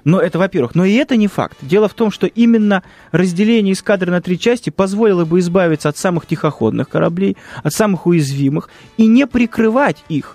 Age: 20-39